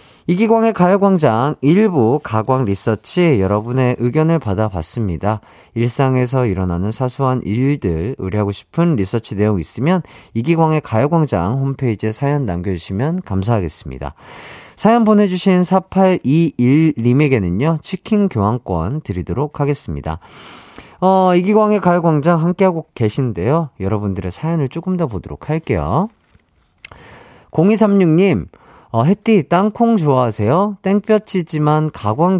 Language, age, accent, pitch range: Korean, 40-59, native, 110-175 Hz